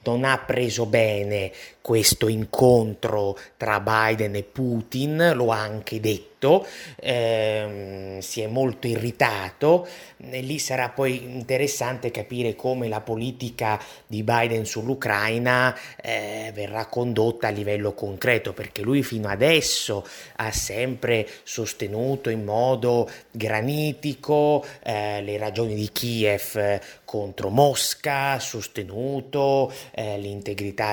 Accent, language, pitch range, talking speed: native, Italian, 110-130 Hz, 110 wpm